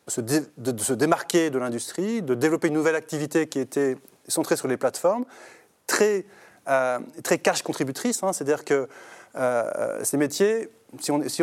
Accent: French